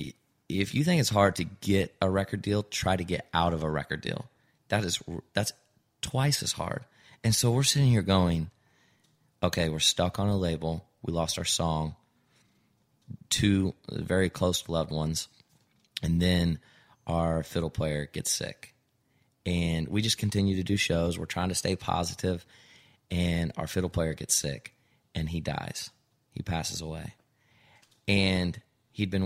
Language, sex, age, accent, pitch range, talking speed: English, male, 30-49, American, 85-105 Hz, 160 wpm